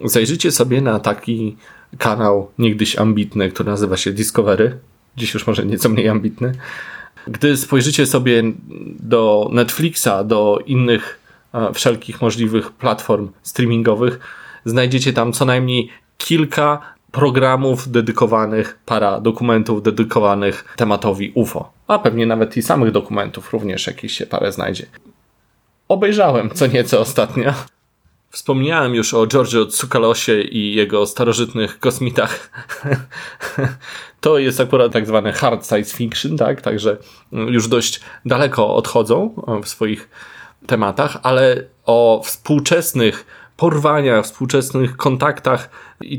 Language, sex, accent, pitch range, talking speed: Polish, male, native, 110-130 Hz, 115 wpm